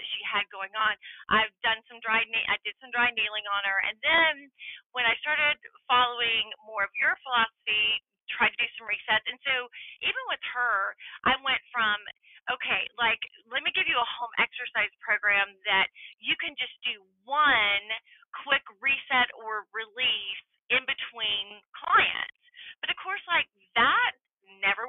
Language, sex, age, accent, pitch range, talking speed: English, female, 30-49, American, 210-265 Hz, 160 wpm